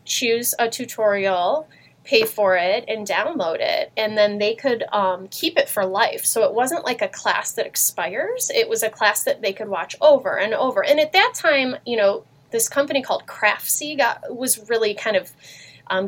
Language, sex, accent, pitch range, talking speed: English, female, American, 205-295 Hz, 200 wpm